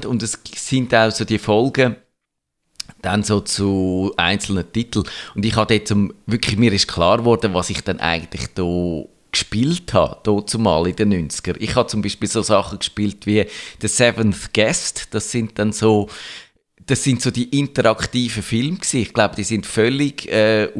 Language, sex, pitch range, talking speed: German, male, 100-120 Hz, 180 wpm